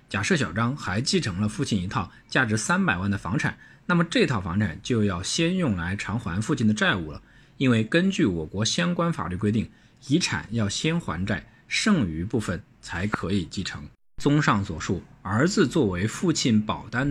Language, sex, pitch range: Chinese, male, 95-145 Hz